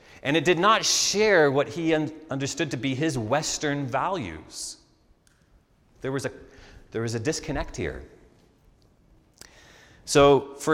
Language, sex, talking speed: English, male, 135 wpm